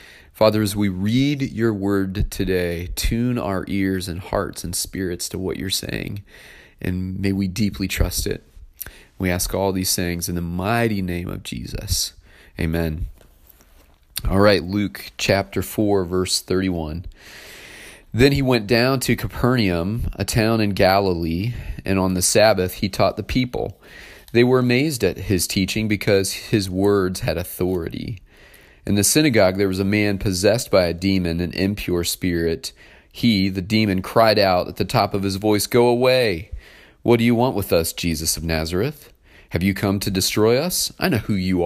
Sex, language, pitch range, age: male, English, 85-105 Hz, 30-49